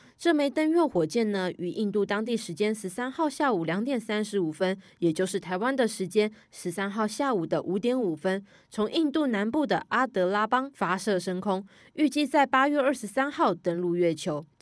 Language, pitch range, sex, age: Chinese, 180-240 Hz, female, 20-39